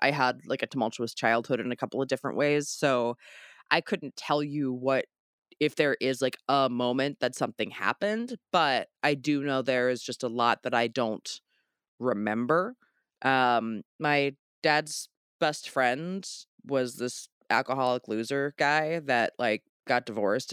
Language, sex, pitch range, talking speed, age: English, female, 120-150 Hz, 160 wpm, 20-39